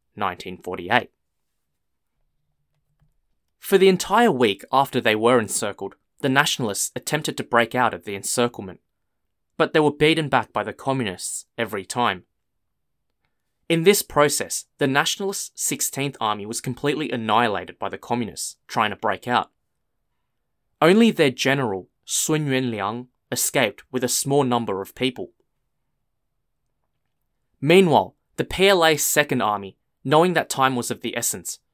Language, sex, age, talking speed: English, male, 20-39, 130 wpm